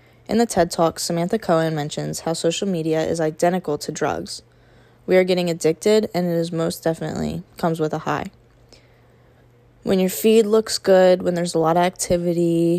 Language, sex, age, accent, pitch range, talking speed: English, female, 10-29, American, 160-185 Hz, 180 wpm